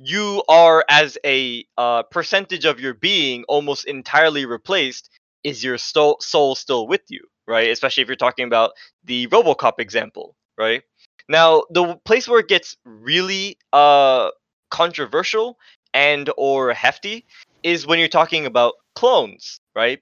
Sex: male